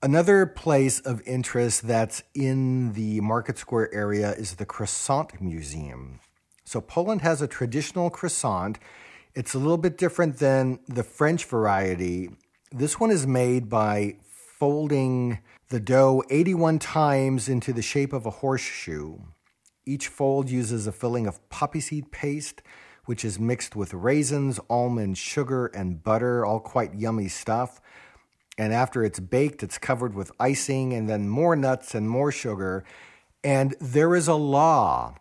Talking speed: 150 wpm